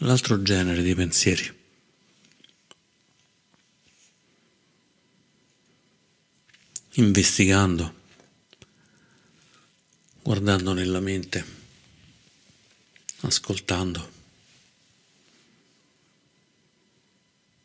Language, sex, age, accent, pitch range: Italian, male, 50-69, native, 90-100 Hz